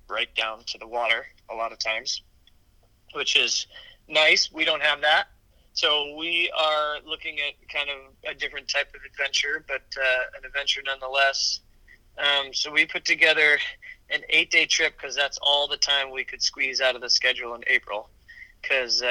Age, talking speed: 20-39, 175 wpm